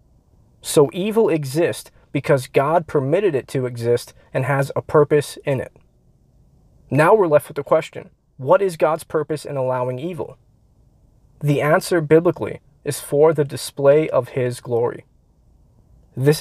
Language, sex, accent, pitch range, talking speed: English, male, American, 130-165 Hz, 145 wpm